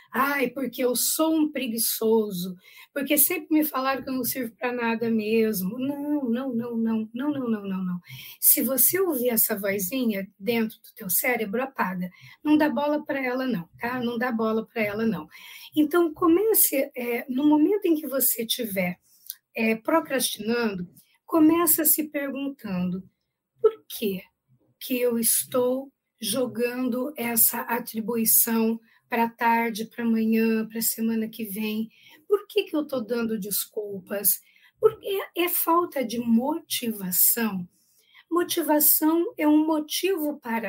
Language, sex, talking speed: Portuguese, female, 140 wpm